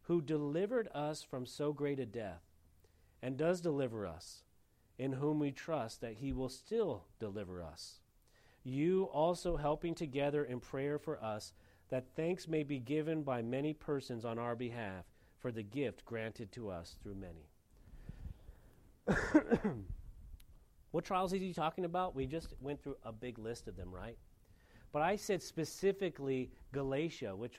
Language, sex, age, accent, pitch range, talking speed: English, male, 40-59, American, 115-160 Hz, 155 wpm